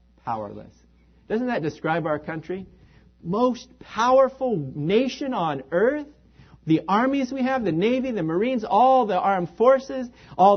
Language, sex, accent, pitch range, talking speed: English, male, American, 135-210 Hz, 135 wpm